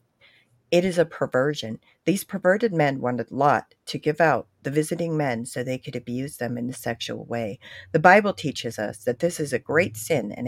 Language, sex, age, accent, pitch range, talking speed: English, female, 50-69, American, 130-195 Hz, 200 wpm